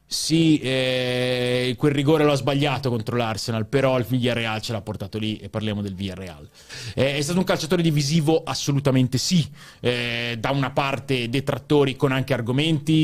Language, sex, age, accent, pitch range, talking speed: Italian, male, 30-49, native, 120-155 Hz, 160 wpm